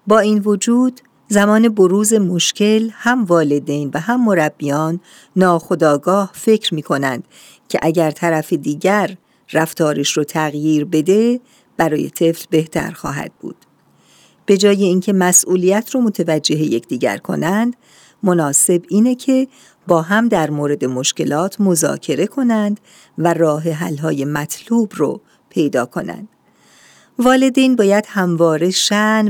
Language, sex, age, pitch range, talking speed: Persian, female, 50-69, 160-205 Hz, 115 wpm